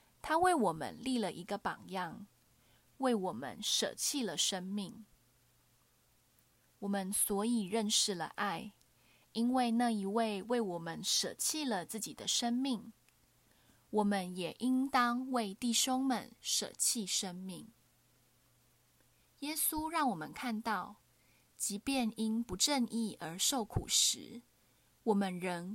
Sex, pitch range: female, 180-240 Hz